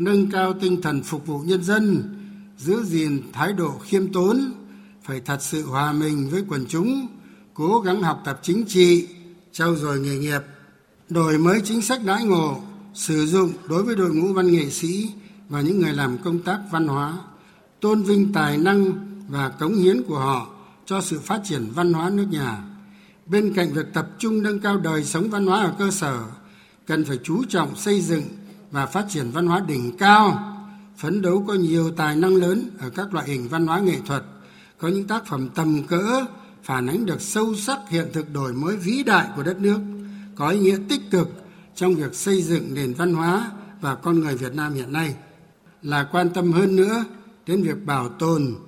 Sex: male